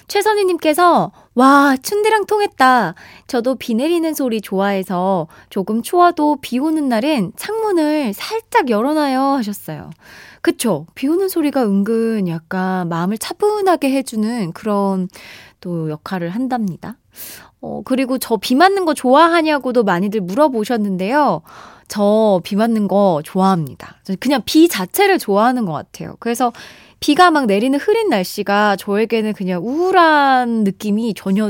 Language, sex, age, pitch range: Korean, female, 20-39, 190-285 Hz